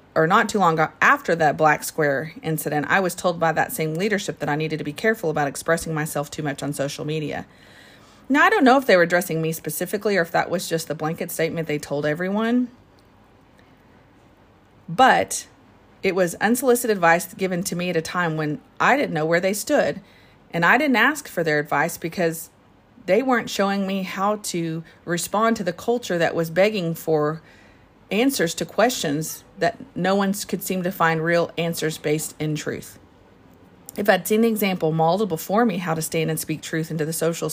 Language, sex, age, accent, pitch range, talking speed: English, female, 40-59, American, 150-190 Hz, 195 wpm